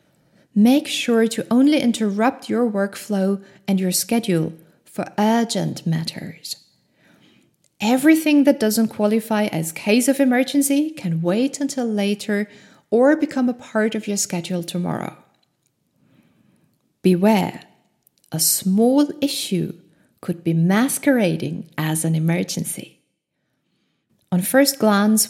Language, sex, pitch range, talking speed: English, female, 175-235 Hz, 110 wpm